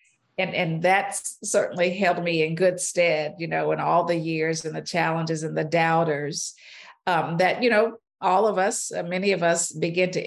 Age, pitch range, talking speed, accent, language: 50-69, 160-185 Hz, 195 wpm, American, English